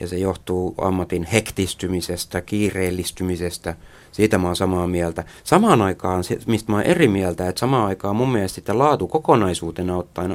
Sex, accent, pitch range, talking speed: male, native, 85-105 Hz, 150 wpm